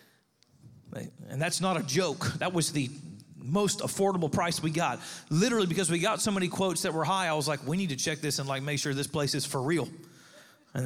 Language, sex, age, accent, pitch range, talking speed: English, male, 40-59, American, 155-190 Hz, 225 wpm